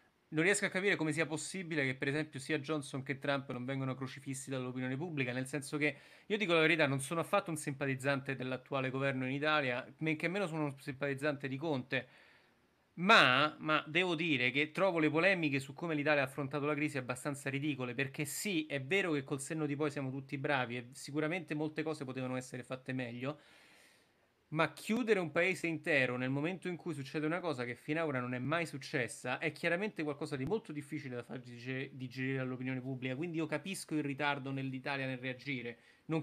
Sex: male